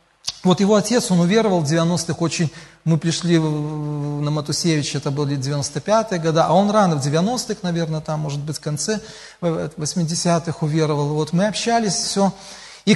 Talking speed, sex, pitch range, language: 160 wpm, male, 155-200 Hz, Russian